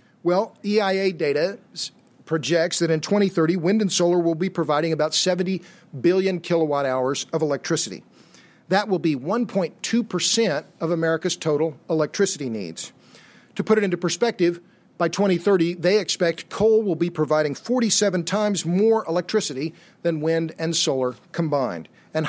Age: 50-69